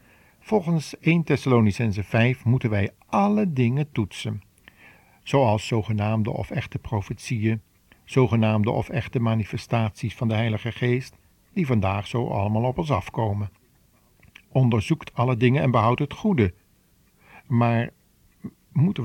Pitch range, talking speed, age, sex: 105-130 Hz, 120 wpm, 50-69, male